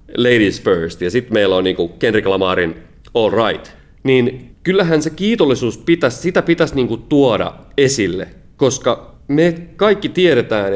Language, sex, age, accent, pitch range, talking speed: Finnish, male, 30-49, native, 95-135 Hz, 140 wpm